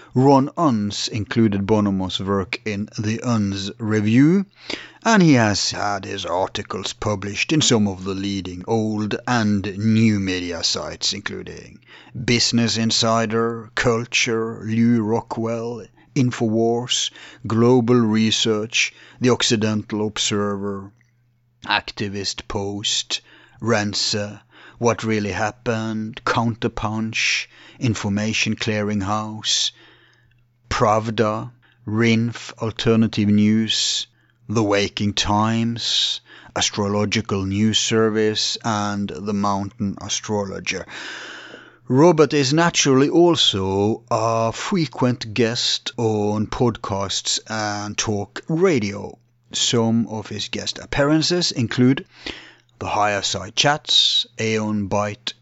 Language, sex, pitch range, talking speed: English, male, 105-120 Hz, 90 wpm